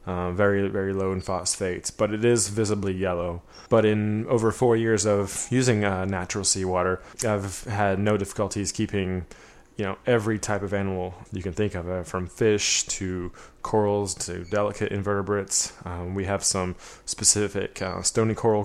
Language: English